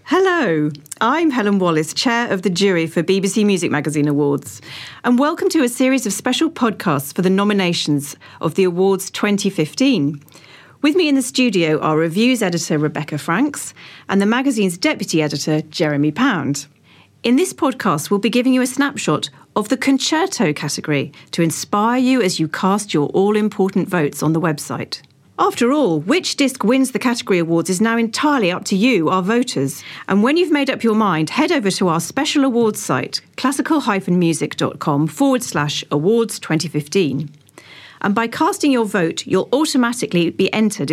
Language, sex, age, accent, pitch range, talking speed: English, female, 40-59, British, 155-240 Hz, 170 wpm